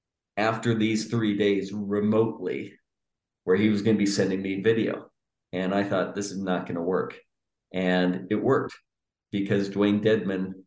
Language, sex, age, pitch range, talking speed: English, male, 40-59, 95-110 Hz, 165 wpm